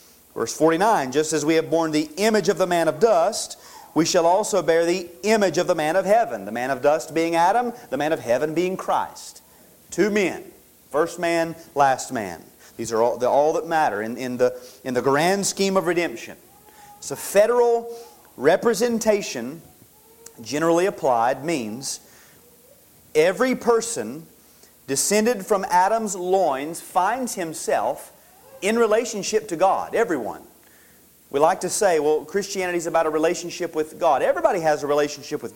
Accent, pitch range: American, 155-220 Hz